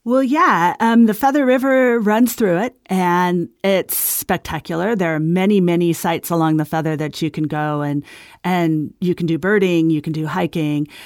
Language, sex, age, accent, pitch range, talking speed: English, female, 40-59, American, 160-195 Hz, 185 wpm